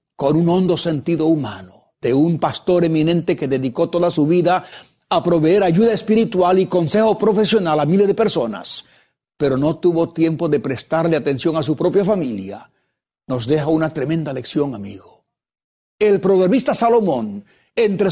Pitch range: 150-210 Hz